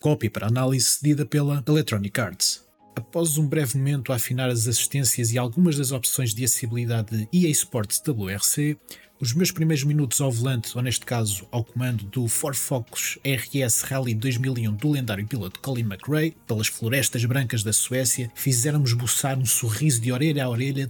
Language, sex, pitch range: Portuguese, male, 120-145 Hz